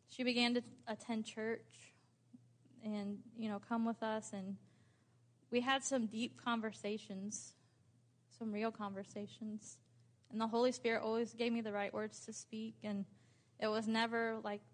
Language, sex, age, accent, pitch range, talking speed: English, female, 20-39, American, 200-230 Hz, 150 wpm